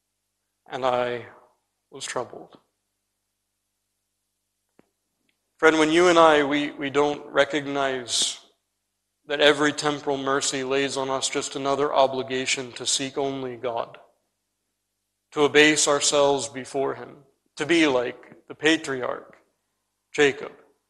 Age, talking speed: 40-59, 110 wpm